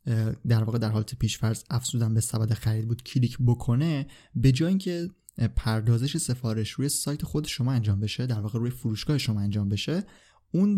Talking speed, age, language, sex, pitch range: 180 wpm, 20-39, Persian, male, 115-140 Hz